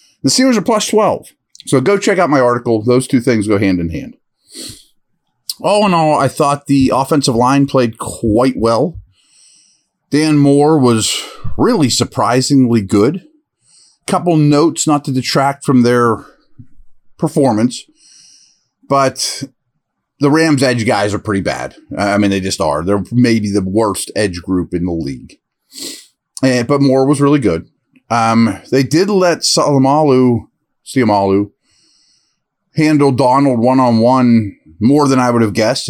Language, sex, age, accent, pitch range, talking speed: English, male, 40-59, American, 110-145 Hz, 145 wpm